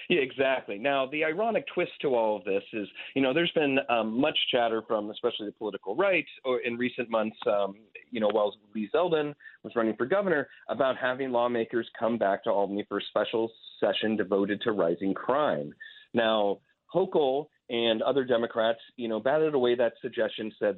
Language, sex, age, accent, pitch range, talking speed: English, male, 30-49, American, 115-145 Hz, 185 wpm